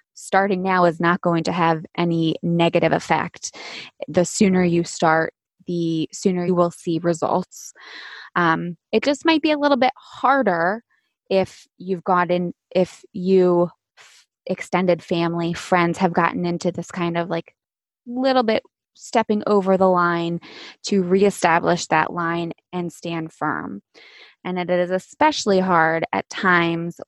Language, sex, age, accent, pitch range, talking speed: English, female, 20-39, American, 170-205 Hz, 140 wpm